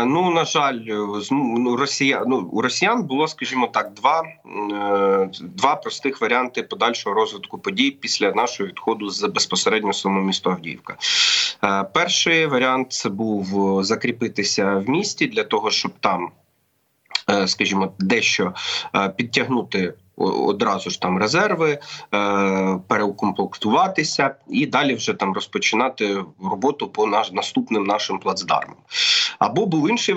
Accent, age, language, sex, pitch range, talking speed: native, 30-49, Ukrainian, male, 100-155 Hz, 115 wpm